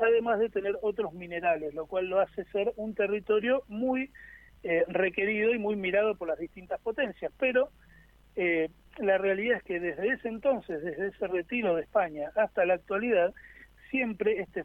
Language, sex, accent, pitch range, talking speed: Spanish, male, Argentinian, 175-230 Hz, 170 wpm